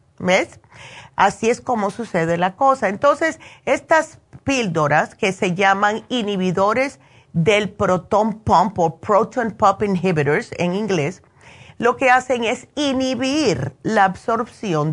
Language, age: Spanish, 40-59